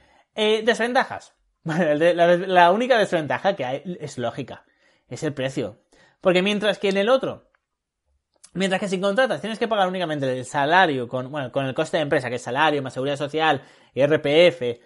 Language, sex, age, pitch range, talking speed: Spanish, male, 30-49, 140-195 Hz, 180 wpm